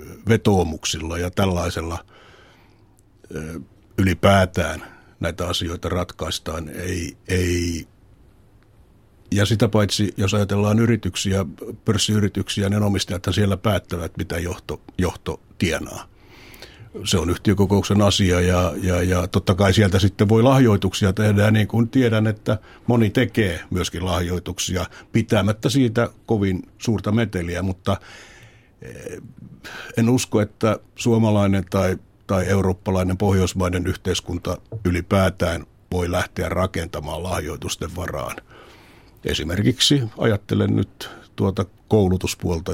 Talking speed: 100 wpm